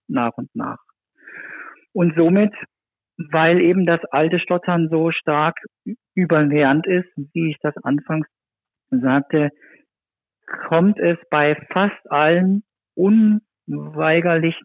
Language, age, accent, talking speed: German, 50-69, German, 100 wpm